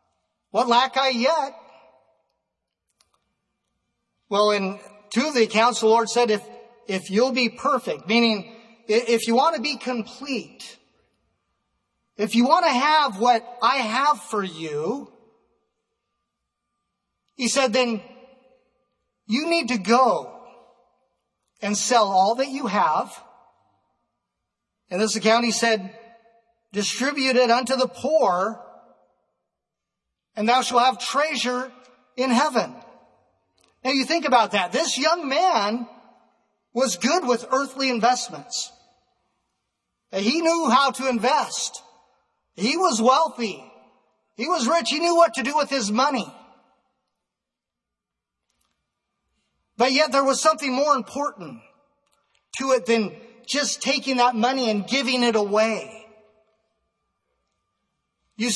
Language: English